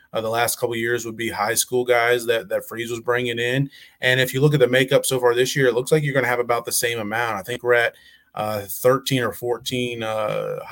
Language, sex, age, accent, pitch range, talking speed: English, male, 30-49, American, 115-125 Hz, 270 wpm